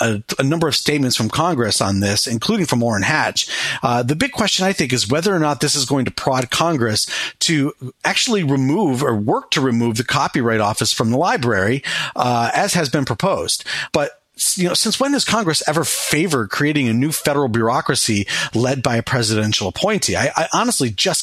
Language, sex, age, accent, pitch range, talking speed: English, male, 40-59, American, 120-160 Hz, 195 wpm